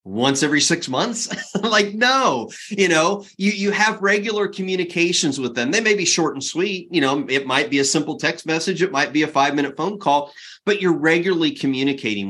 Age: 30-49